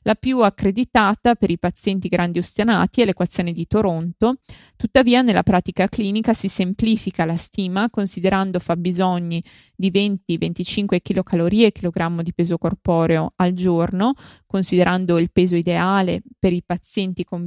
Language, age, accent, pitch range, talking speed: Italian, 20-39, native, 175-205 Hz, 135 wpm